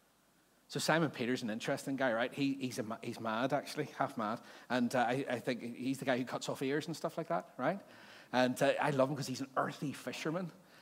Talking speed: 235 wpm